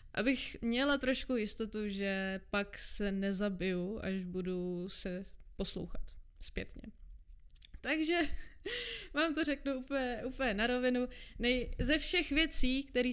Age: 20-39